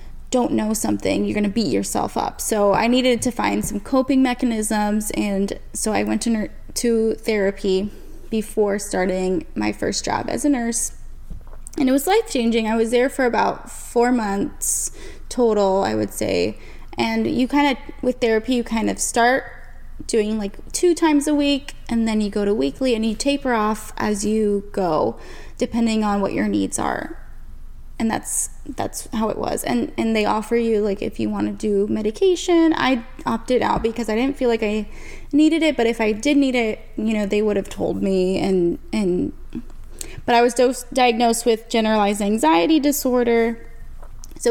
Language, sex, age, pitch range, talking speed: English, female, 20-39, 205-250 Hz, 185 wpm